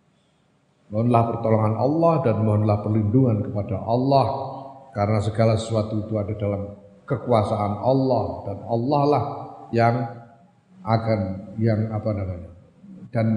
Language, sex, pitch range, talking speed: Indonesian, male, 115-155 Hz, 110 wpm